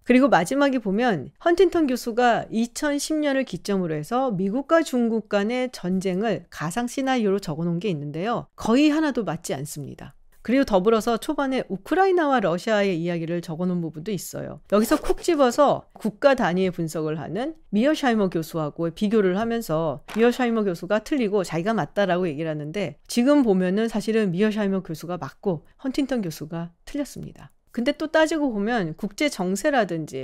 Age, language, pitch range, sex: 40-59, Korean, 180-270 Hz, female